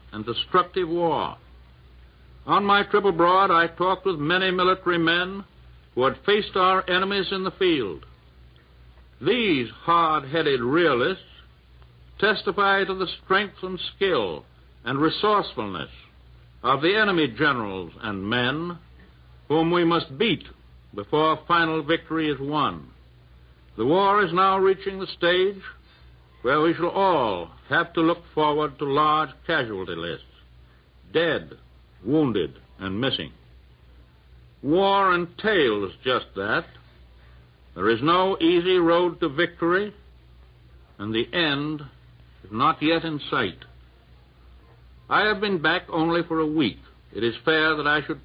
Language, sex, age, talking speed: English, male, 60-79, 130 wpm